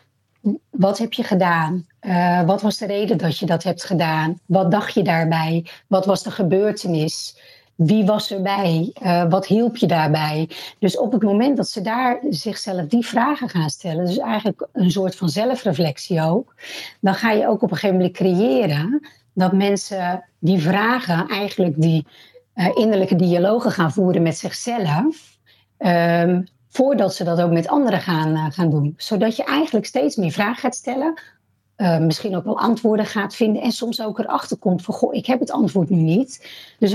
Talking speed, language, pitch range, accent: 175 wpm, Dutch, 170-215 Hz, Dutch